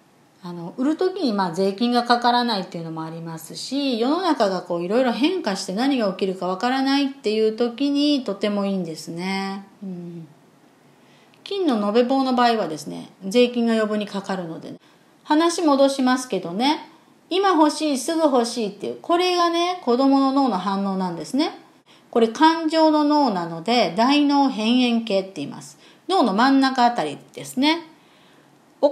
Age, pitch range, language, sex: 40-59, 205-310 Hz, Japanese, female